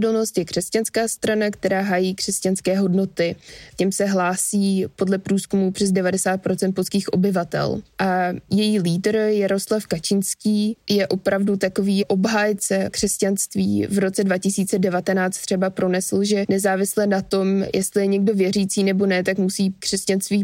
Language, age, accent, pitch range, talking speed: Czech, 20-39, native, 185-200 Hz, 130 wpm